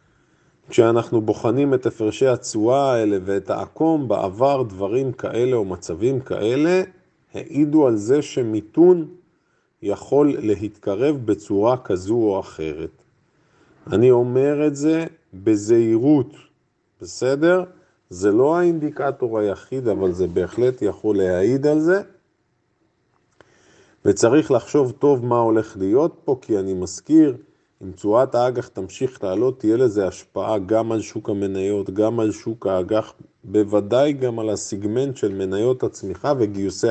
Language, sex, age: Hebrew, male, 50-69